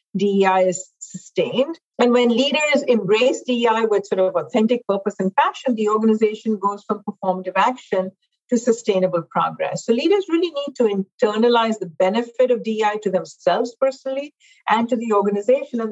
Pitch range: 190-265 Hz